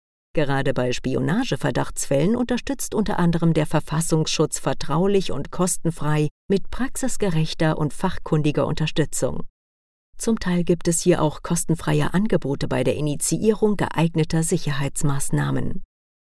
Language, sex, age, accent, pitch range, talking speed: German, female, 50-69, German, 145-195 Hz, 105 wpm